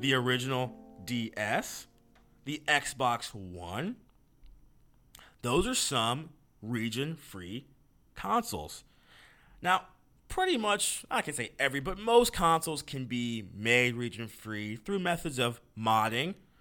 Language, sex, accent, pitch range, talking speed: English, male, American, 105-145 Hz, 110 wpm